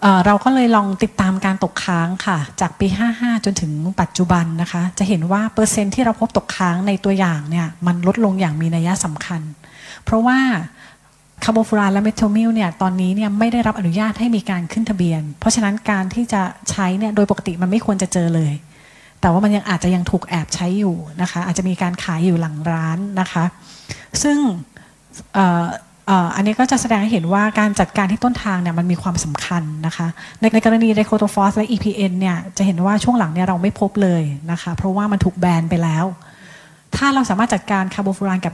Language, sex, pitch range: Thai, female, 175-210 Hz